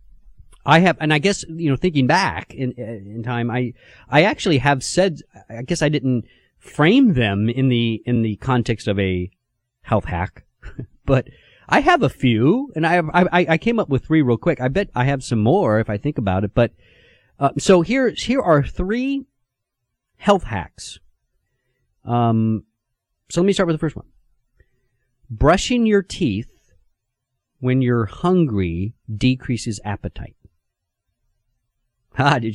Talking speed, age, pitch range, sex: 160 wpm, 40-59, 105-150 Hz, male